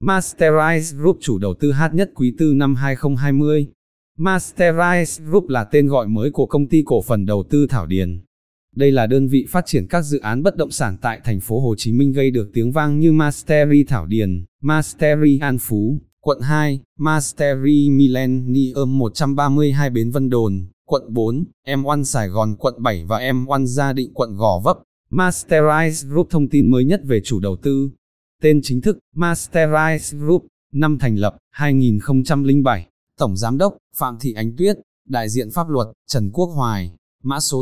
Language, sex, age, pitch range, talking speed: Vietnamese, male, 20-39, 115-150 Hz, 180 wpm